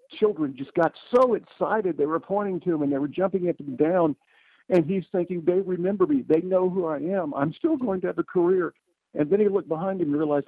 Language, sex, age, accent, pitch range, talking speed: English, male, 50-69, American, 120-180 Hz, 245 wpm